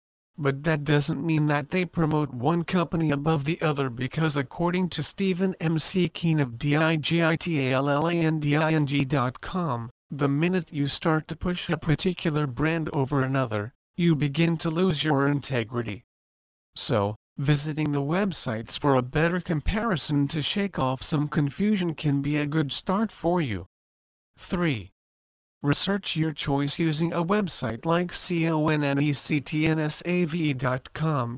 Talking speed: 130 wpm